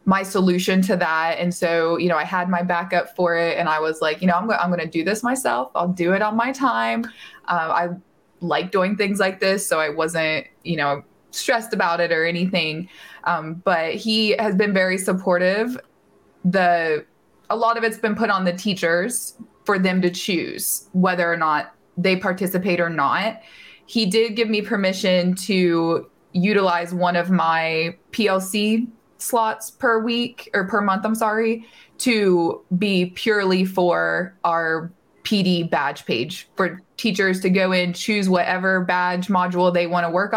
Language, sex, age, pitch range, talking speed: English, female, 20-39, 170-210 Hz, 175 wpm